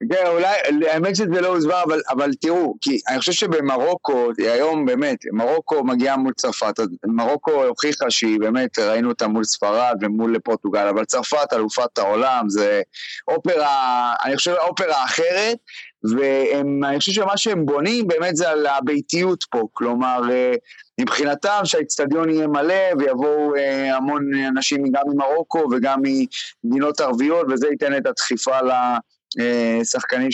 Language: Hebrew